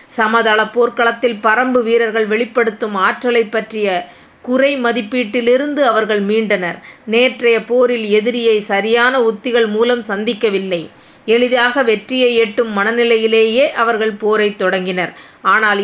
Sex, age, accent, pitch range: female, 30-49, native, 210-240 Hz